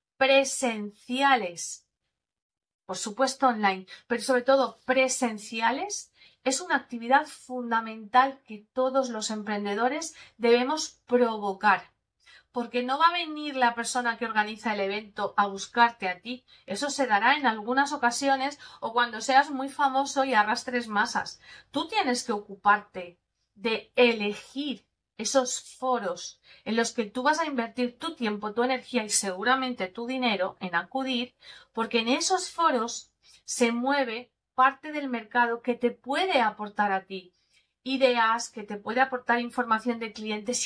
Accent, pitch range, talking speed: Spanish, 220-270 Hz, 140 wpm